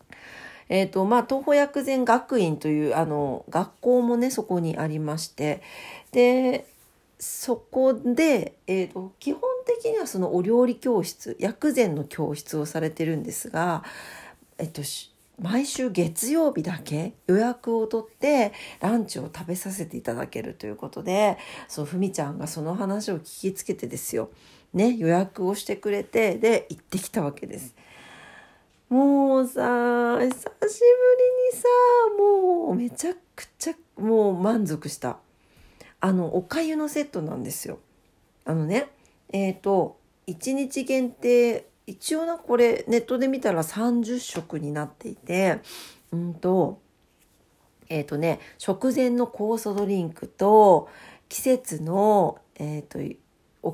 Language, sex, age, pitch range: Japanese, female, 50-69, 170-255 Hz